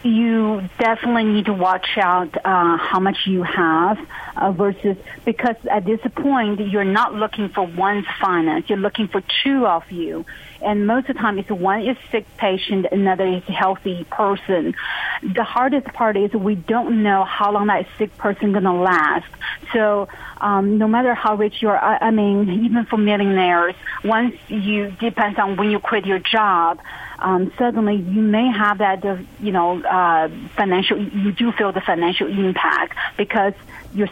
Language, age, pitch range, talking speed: English, 30-49, 190-215 Hz, 175 wpm